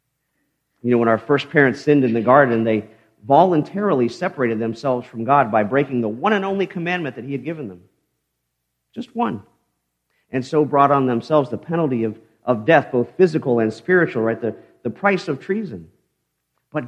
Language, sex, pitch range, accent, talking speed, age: English, male, 115-155 Hz, American, 180 wpm, 50-69